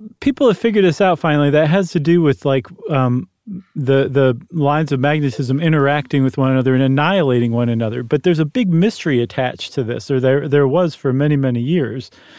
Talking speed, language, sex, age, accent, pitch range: 205 wpm, English, male, 40-59, American, 130-175 Hz